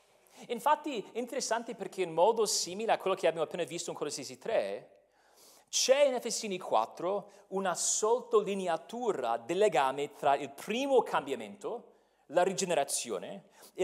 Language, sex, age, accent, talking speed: Italian, male, 40-59, native, 135 wpm